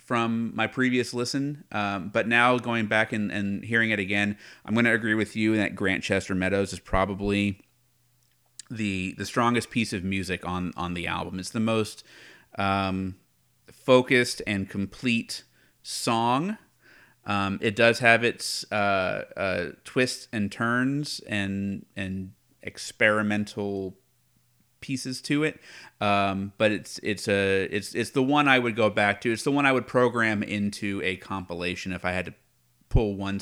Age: 30-49